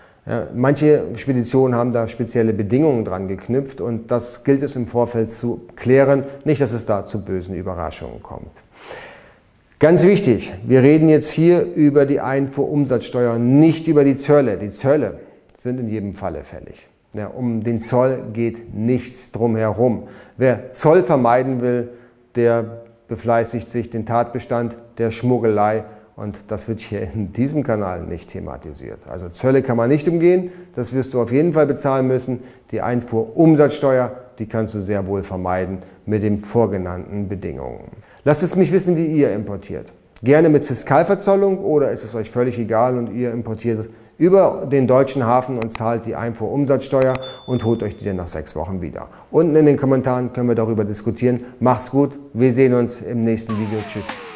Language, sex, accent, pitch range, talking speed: German, male, German, 110-135 Hz, 170 wpm